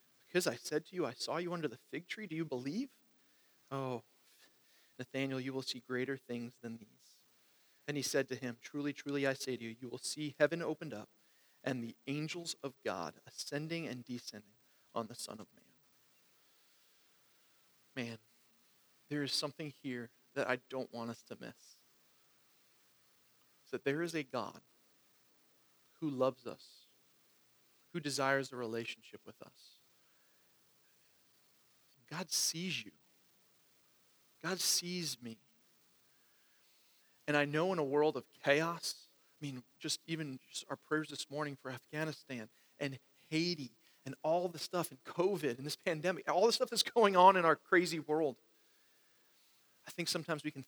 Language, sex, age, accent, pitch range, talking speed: English, male, 40-59, American, 130-165 Hz, 155 wpm